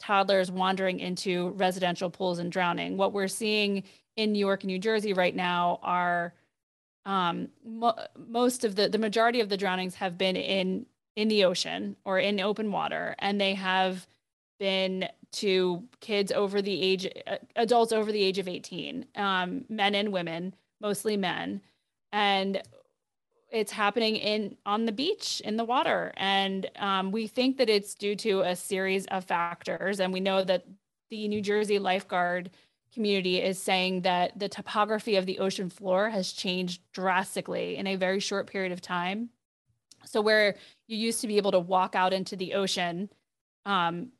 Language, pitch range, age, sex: English, 185-210 Hz, 20-39, female